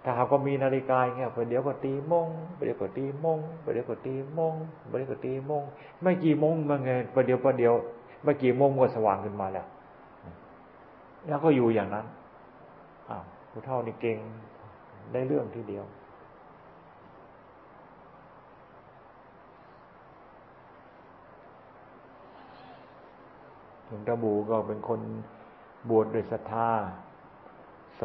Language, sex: Thai, male